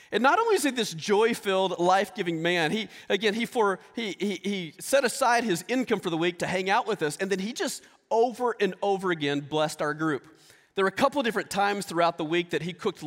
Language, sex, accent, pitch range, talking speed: English, male, American, 170-225 Hz, 240 wpm